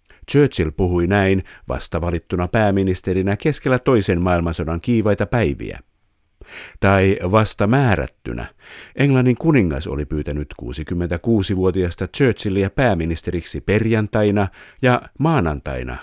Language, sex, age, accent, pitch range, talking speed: Finnish, male, 50-69, native, 90-120 Hz, 85 wpm